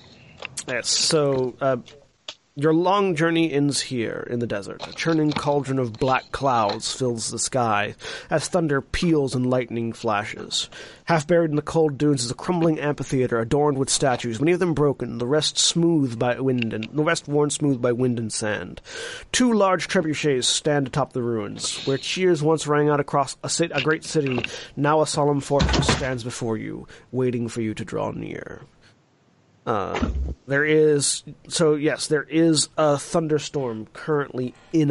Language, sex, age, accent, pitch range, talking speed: English, male, 30-49, American, 120-155 Hz, 170 wpm